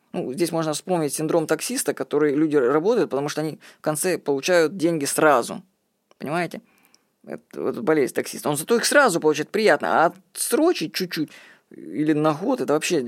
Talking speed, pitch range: 165 wpm, 150-205 Hz